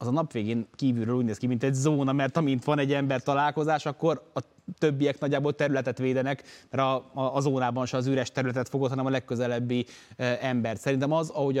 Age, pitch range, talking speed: 20-39, 125-140 Hz, 205 wpm